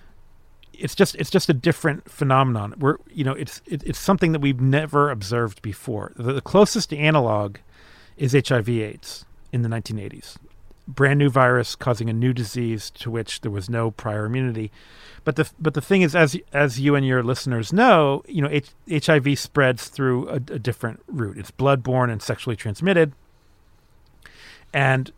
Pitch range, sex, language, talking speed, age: 120-155 Hz, male, English, 170 wpm, 40-59